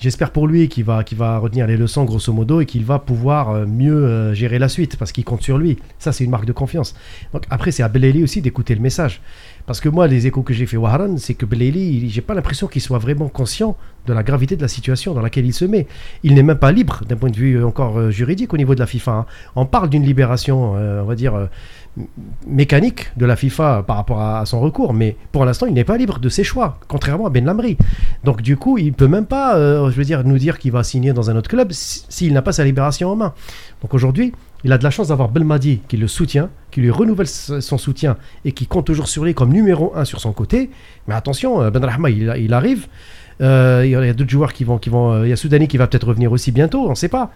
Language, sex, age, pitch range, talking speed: French, male, 40-59, 120-150 Hz, 260 wpm